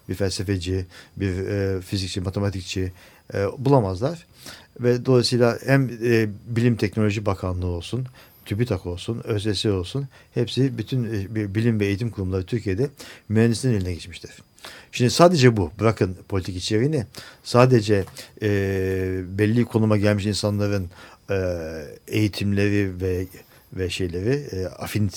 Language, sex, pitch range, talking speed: Turkish, male, 95-125 Hz, 115 wpm